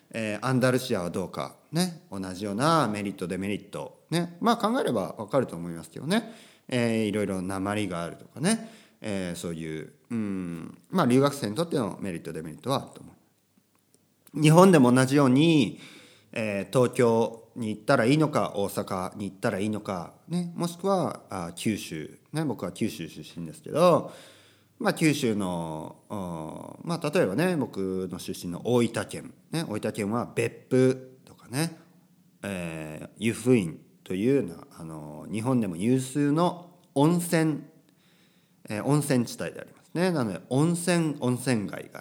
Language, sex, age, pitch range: Japanese, male, 40-59, 95-150 Hz